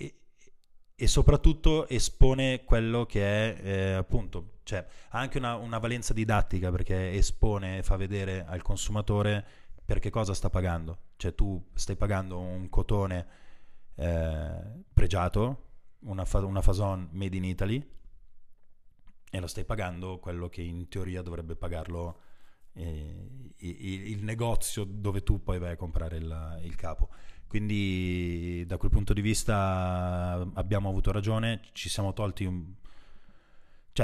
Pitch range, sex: 85-105 Hz, male